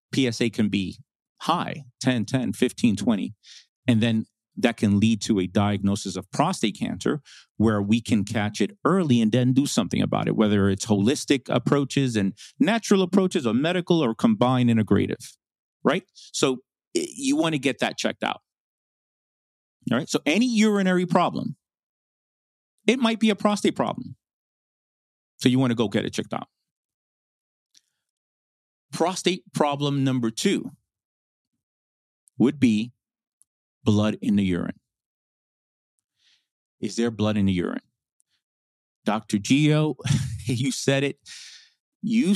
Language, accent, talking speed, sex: English, American, 135 wpm, male